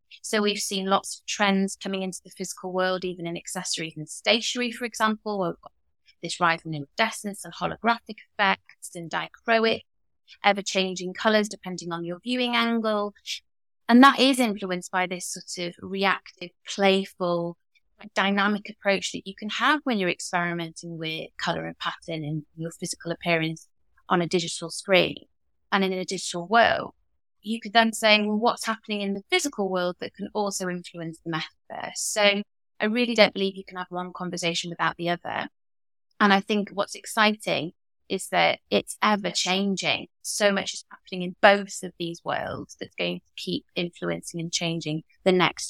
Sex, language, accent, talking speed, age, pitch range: female, English, British, 170 wpm, 20-39, 175-210 Hz